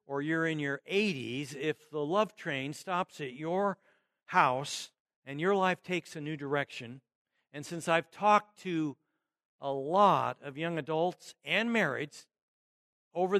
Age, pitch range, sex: 60-79, 135-180 Hz, male